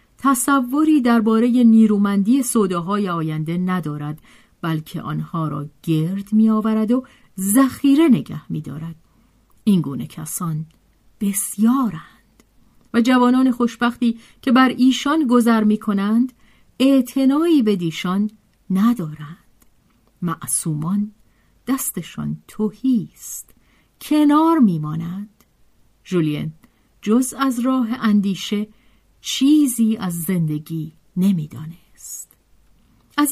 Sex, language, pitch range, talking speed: female, Persian, 170-250 Hz, 85 wpm